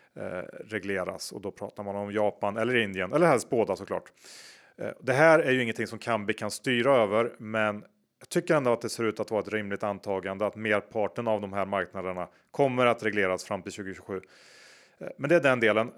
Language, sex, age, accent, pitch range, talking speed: Swedish, male, 30-49, Norwegian, 100-125 Hz, 200 wpm